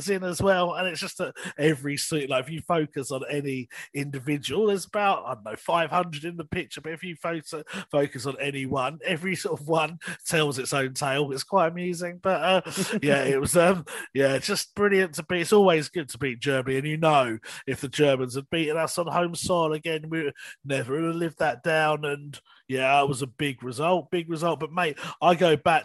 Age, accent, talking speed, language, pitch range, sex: 30-49, British, 215 wpm, English, 135-170 Hz, male